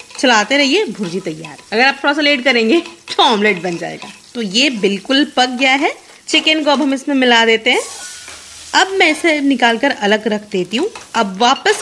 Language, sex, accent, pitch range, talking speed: Hindi, female, native, 200-310 Hz, 190 wpm